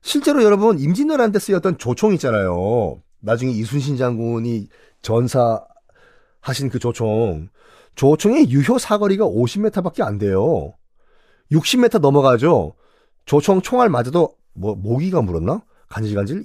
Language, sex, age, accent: Korean, male, 40-59, native